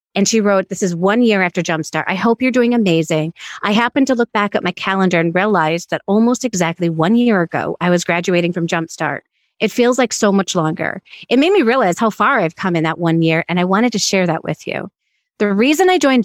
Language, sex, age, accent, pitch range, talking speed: English, female, 30-49, American, 170-210 Hz, 240 wpm